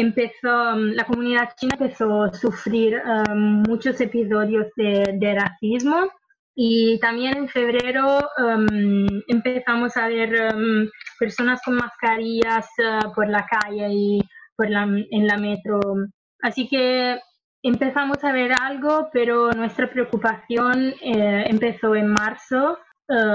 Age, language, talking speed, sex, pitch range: 20-39, Spanish, 125 wpm, female, 215-250 Hz